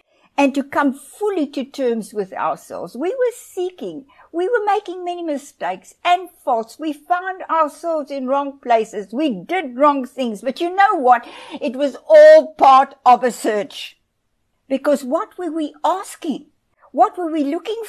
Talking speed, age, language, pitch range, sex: 160 wpm, 60-79, English, 240-325 Hz, female